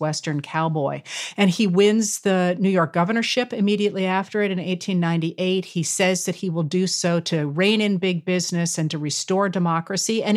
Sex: female